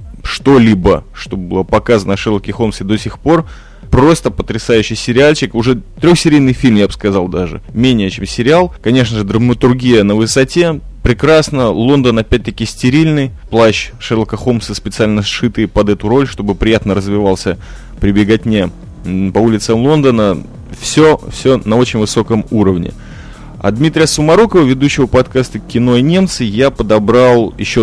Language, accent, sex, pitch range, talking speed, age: Russian, native, male, 105-135 Hz, 140 wpm, 20-39